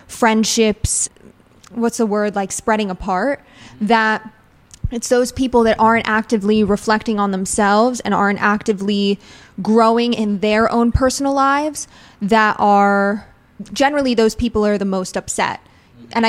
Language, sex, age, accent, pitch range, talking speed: English, female, 20-39, American, 195-225 Hz, 135 wpm